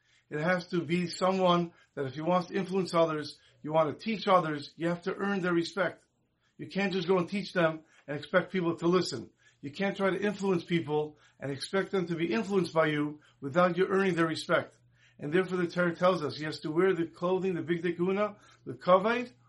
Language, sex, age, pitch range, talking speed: English, male, 50-69, 150-190 Hz, 220 wpm